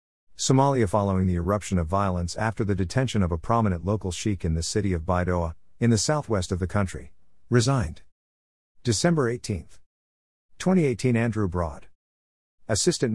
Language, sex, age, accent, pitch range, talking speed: English, male, 50-69, American, 80-110 Hz, 145 wpm